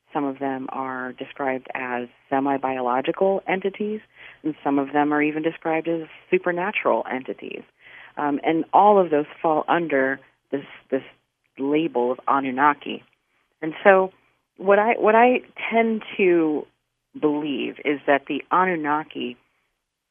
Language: English